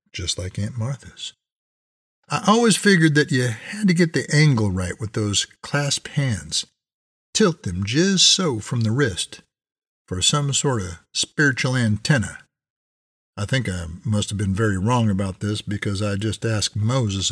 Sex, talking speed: male, 165 wpm